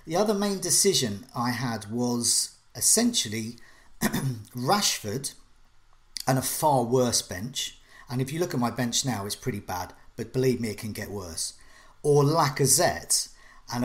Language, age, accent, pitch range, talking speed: English, 40-59, British, 110-135 Hz, 150 wpm